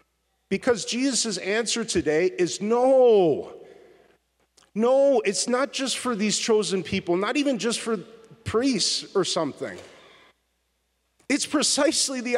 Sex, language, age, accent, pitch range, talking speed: male, English, 40-59, American, 180-260 Hz, 115 wpm